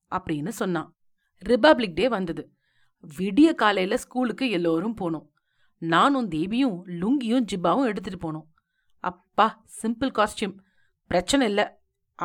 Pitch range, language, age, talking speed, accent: 185-275 Hz, Tamil, 40-59, 105 wpm, native